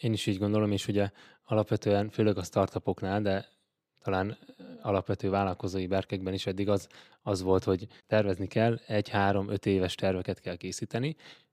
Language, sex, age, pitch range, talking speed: Hungarian, male, 20-39, 95-105 Hz, 145 wpm